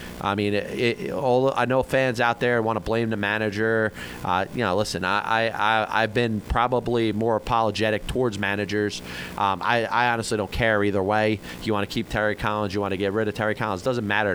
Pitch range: 100-130 Hz